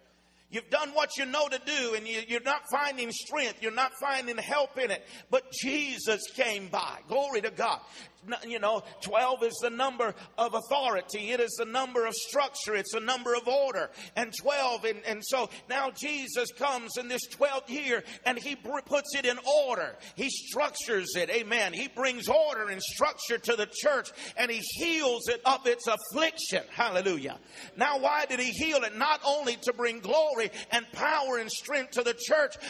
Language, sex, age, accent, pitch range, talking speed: English, male, 50-69, American, 220-275 Hz, 185 wpm